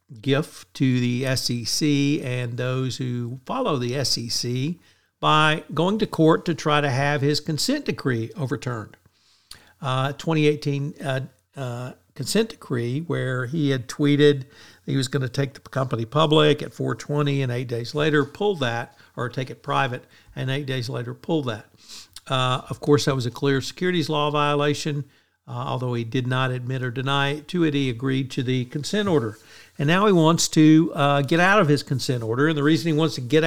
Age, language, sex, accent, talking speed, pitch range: 60-79, English, male, American, 190 wpm, 130-155 Hz